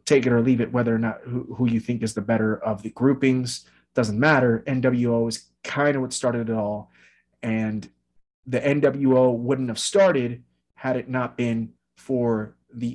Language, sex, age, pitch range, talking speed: English, male, 30-49, 110-135 Hz, 185 wpm